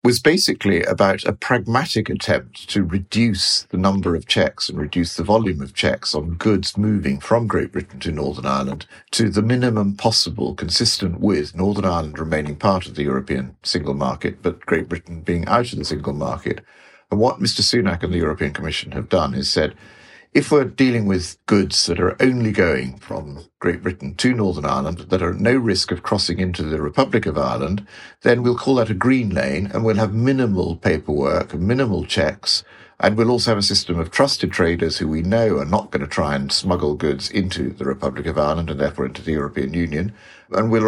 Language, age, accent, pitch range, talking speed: English, 50-69, British, 85-110 Hz, 200 wpm